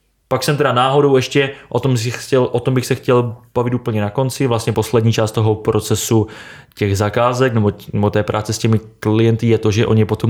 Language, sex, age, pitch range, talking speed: Czech, male, 20-39, 110-125 Hz, 225 wpm